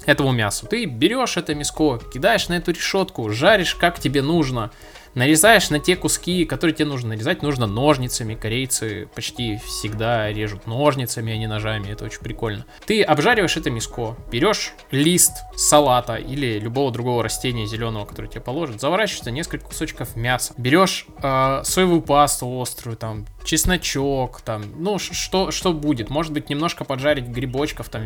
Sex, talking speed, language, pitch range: male, 155 wpm, Russian, 115-150 Hz